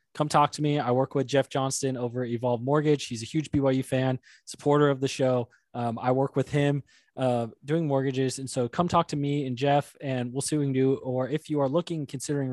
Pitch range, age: 125-140 Hz, 20-39